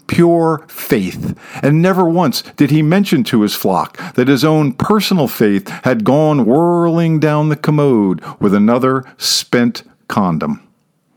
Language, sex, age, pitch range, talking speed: English, male, 50-69, 140-190 Hz, 140 wpm